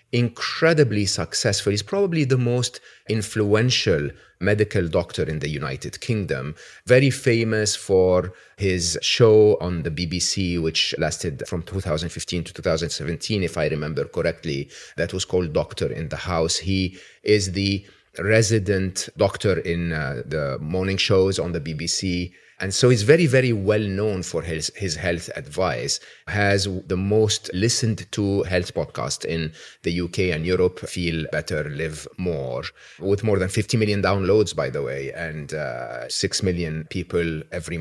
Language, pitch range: English, 85-110 Hz